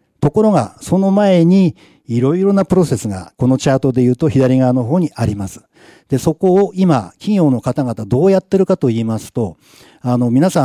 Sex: male